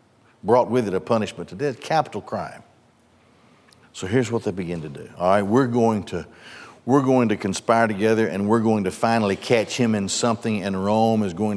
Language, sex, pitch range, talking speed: English, male, 115-175 Hz, 200 wpm